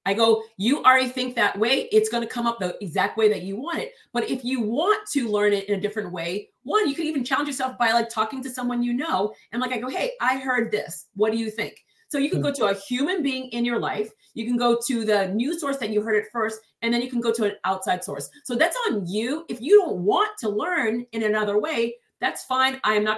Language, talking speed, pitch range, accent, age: English, 270 wpm, 205-245 Hz, American, 40-59